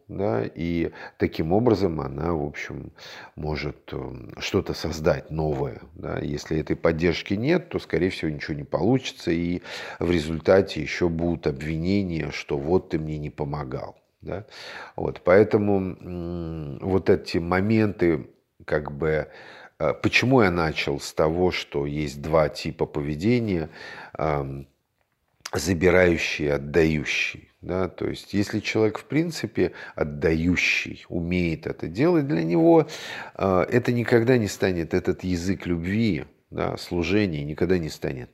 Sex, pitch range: male, 80-105 Hz